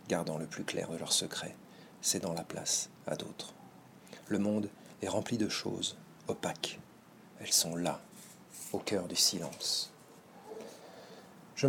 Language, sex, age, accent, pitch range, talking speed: French, male, 40-59, French, 100-120 Hz, 140 wpm